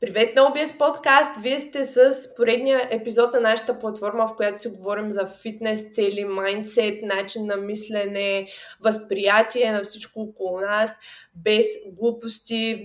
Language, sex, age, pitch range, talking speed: Bulgarian, female, 20-39, 195-245 Hz, 145 wpm